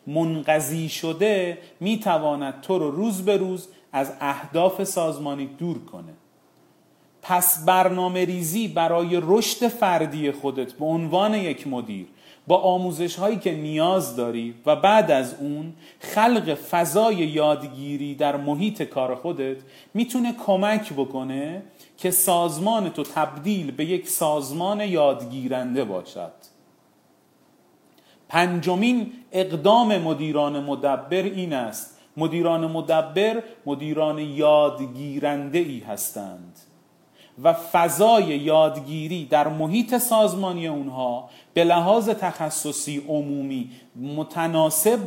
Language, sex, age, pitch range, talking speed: Persian, male, 40-59, 140-185 Hz, 100 wpm